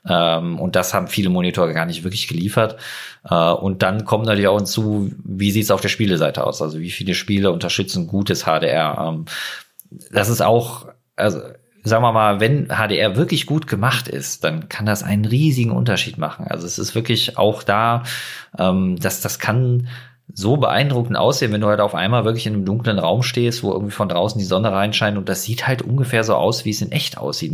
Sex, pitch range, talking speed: male, 100-125 Hz, 200 wpm